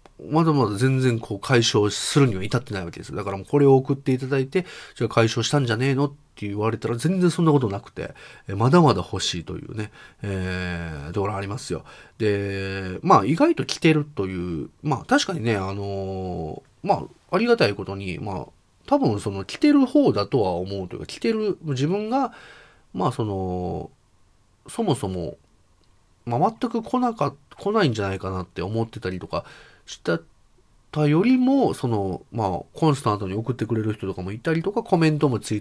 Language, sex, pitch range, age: Japanese, male, 100-150 Hz, 30-49